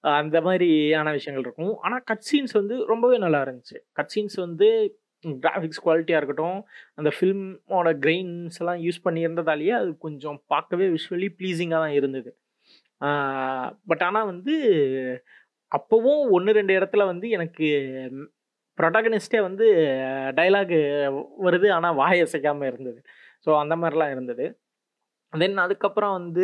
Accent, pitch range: native, 150-195 Hz